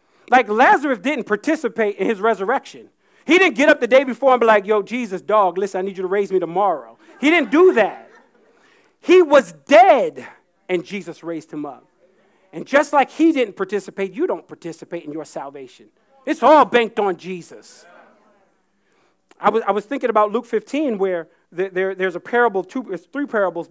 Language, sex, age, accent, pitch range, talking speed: English, male, 40-59, American, 200-295 Hz, 190 wpm